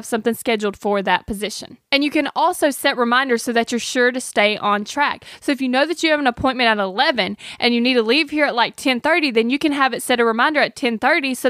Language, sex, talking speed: English, female, 270 wpm